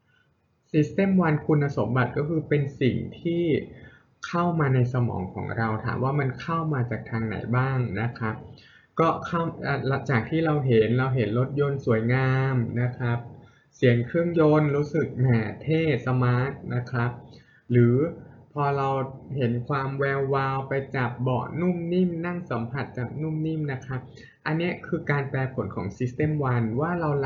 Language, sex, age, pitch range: Thai, male, 20-39, 120-145 Hz